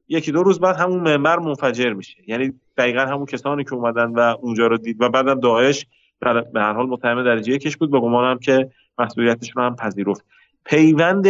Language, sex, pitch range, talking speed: Persian, male, 115-145 Hz, 185 wpm